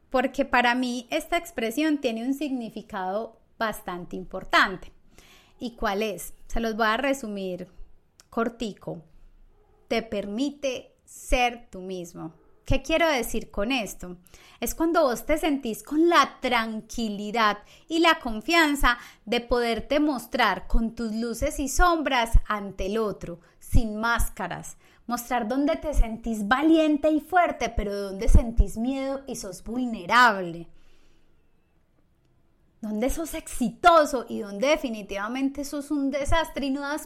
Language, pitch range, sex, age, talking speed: Spanish, 225-310 Hz, female, 30-49, 130 wpm